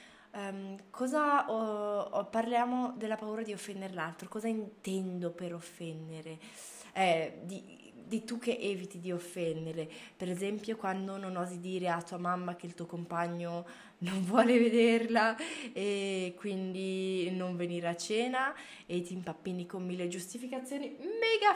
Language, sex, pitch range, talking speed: Italian, female, 190-255 Hz, 140 wpm